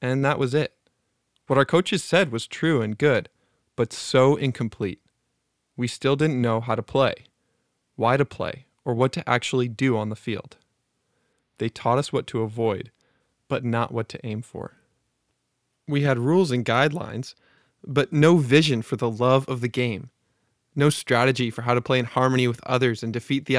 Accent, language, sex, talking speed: American, English, male, 185 wpm